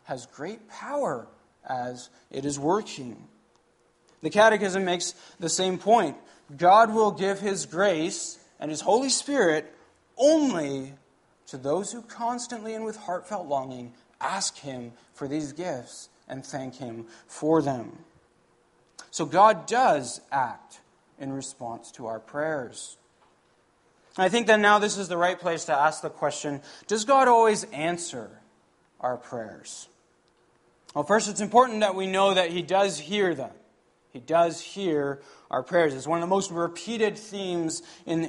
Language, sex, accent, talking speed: English, male, American, 145 wpm